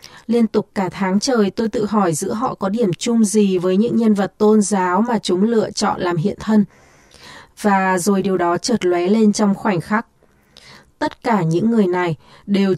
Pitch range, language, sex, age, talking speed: 180-220 Hz, Vietnamese, female, 20-39, 200 wpm